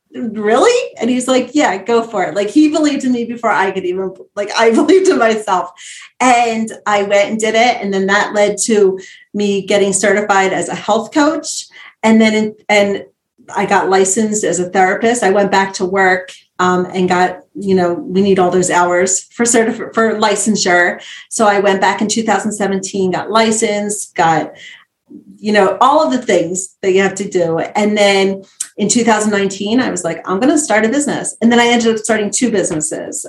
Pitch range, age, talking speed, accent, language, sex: 185-225 Hz, 30-49, 195 wpm, American, English, female